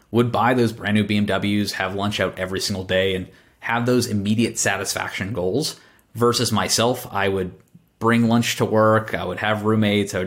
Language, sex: English, male